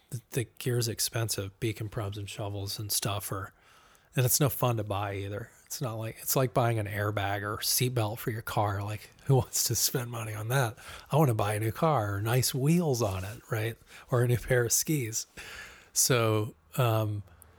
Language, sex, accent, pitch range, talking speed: English, male, American, 105-130 Hz, 205 wpm